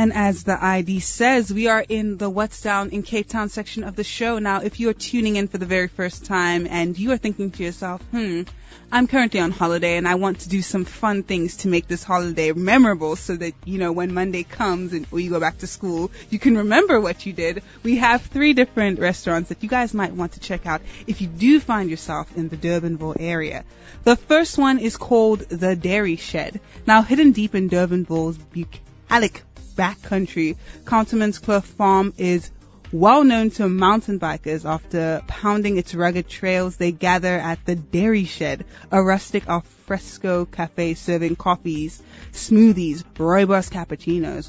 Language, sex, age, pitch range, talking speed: English, female, 20-39, 170-215 Hz, 185 wpm